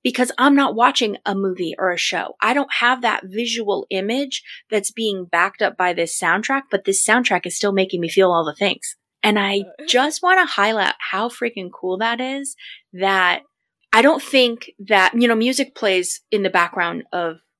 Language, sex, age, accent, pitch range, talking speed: English, female, 20-39, American, 175-225 Hz, 195 wpm